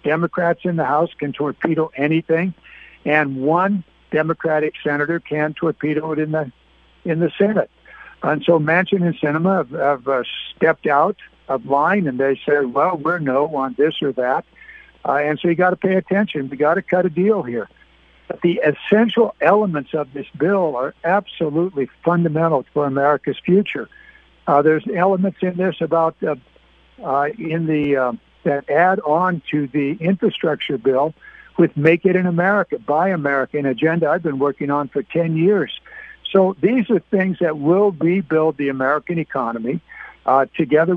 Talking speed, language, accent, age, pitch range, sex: 165 wpm, English, American, 60-79, 145-180 Hz, male